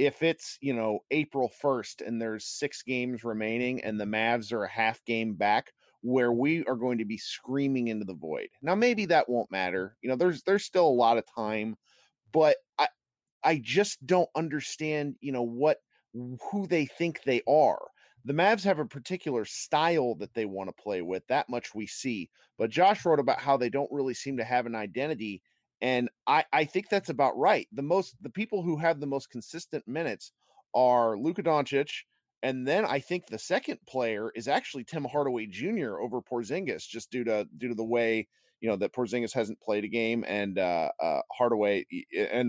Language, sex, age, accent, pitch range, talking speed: English, male, 30-49, American, 115-165 Hz, 200 wpm